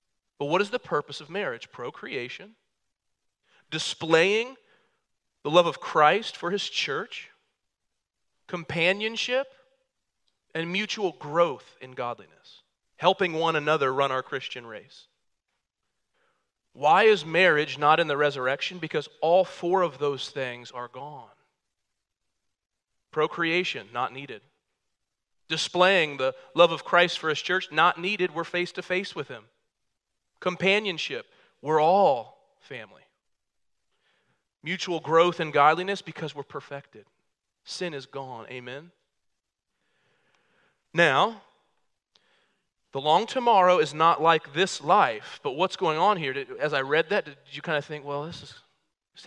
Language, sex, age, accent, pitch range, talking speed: English, male, 40-59, American, 145-190 Hz, 130 wpm